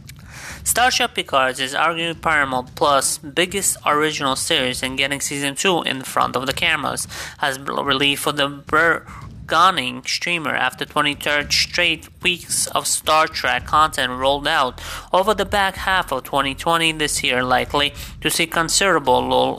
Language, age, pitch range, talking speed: English, 20-39, 130-165 Hz, 145 wpm